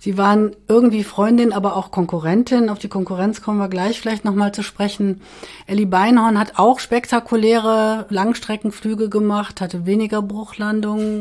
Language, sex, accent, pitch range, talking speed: German, female, German, 185-230 Hz, 145 wpm